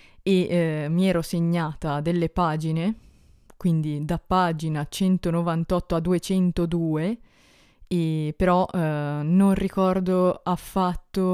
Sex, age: female, 20-39